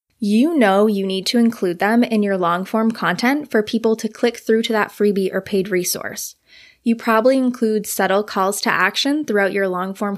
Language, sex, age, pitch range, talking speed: English, female, 20-39, 190-235 Hz, 190 wpm